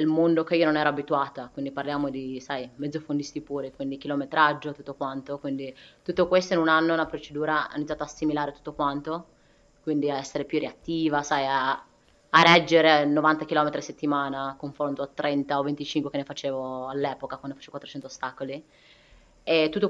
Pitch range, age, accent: 140-155 Hz, 20-39, native